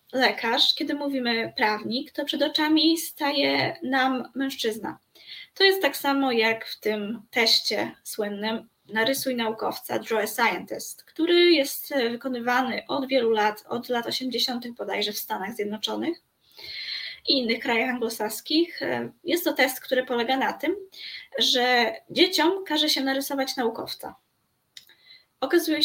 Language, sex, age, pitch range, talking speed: Polish, female, 20-39, 230-305 Hz, 130 wpm